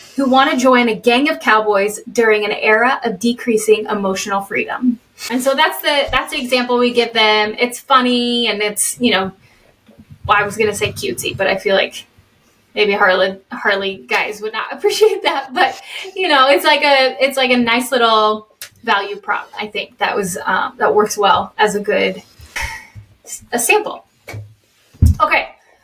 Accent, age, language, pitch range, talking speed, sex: American, 10-29, English, 215-270 Hz, 180 wpm, female